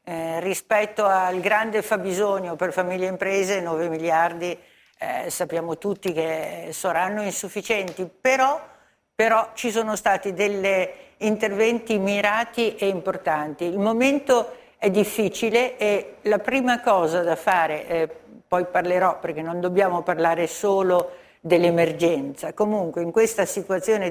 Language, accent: Italian, native